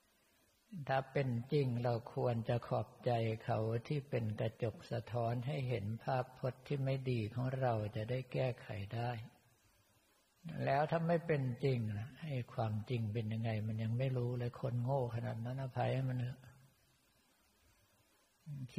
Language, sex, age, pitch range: Thai, male, 60-79, 115-130 Hz